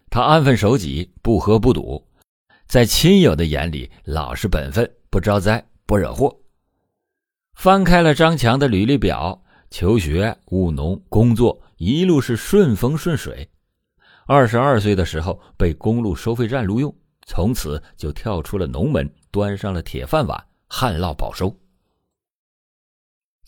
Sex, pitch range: male, 90-135 Hz